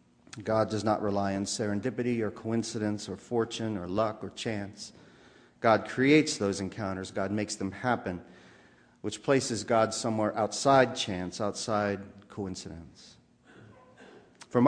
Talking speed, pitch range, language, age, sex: 125 wpm, 100-120 Hz, English, 40-59, male